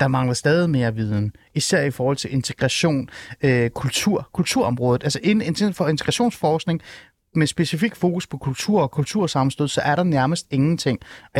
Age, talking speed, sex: 30-49, 160 wpm, male